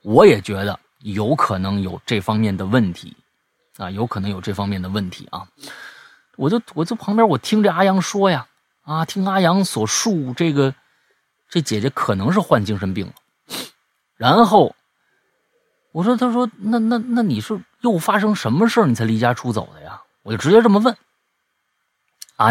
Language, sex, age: Chinese, male, 30-49